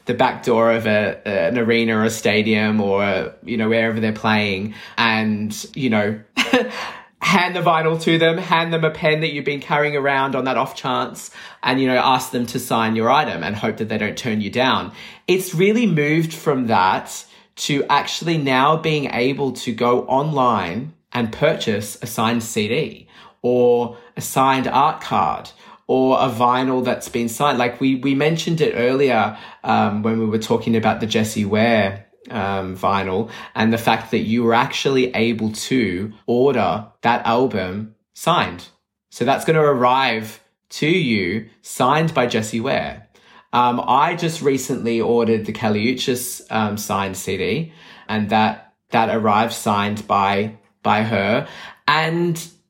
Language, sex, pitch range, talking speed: English, male, 110-145 Hz, 160 wpm